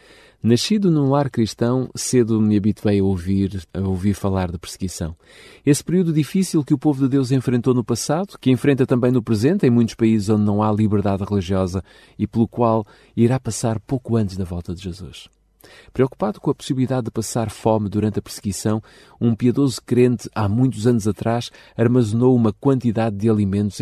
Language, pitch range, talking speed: Portuguese, 100-135 Hz, 175 wpm